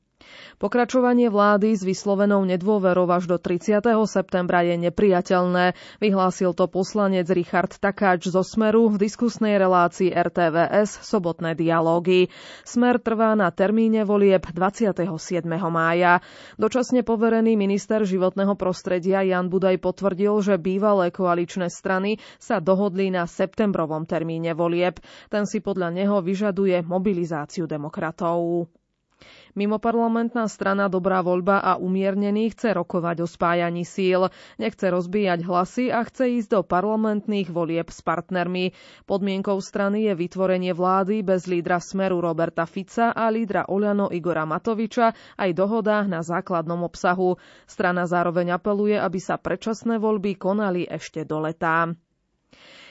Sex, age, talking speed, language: female, 20-39, 125 wpm, Slovak